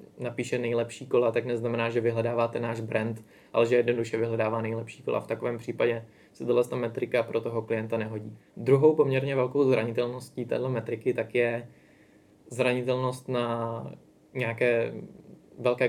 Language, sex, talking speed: Czech, male, 140 wpm